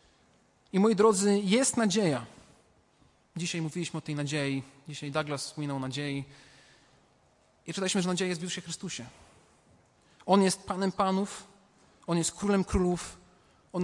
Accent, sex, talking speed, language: native, male, 140 wpm, Polish